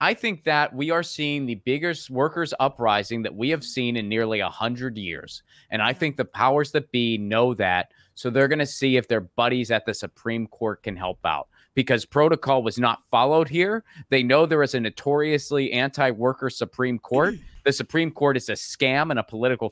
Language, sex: English, male